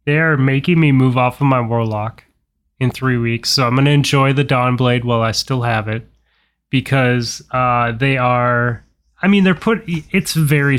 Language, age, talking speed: English, 20-39, 190 wpm